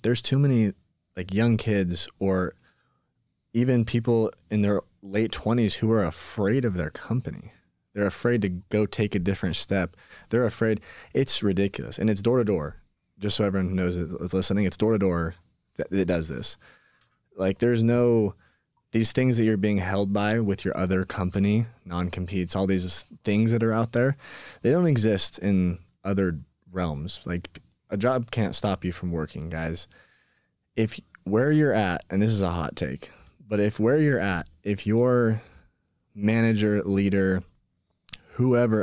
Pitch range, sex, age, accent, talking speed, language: 90-110 Hz, male, 20-39, American, 165 wpm, English